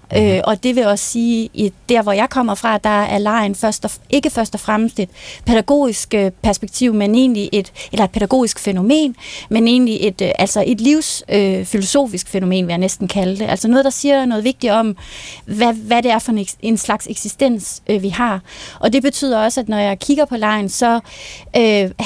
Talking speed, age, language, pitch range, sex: 200 wpm, 30-49, Danish, 205-245 Hz, female